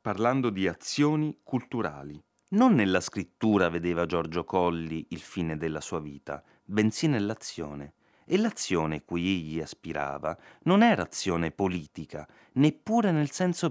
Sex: male